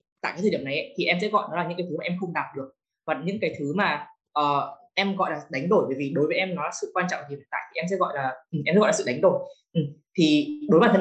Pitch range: 155-200 Hz